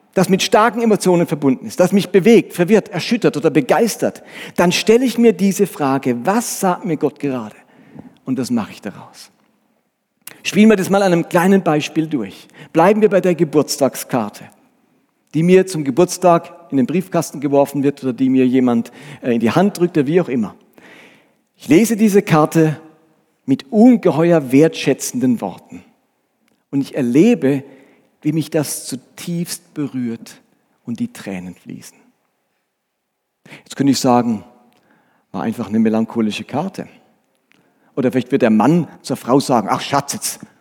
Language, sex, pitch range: German, male, 135-195 Hz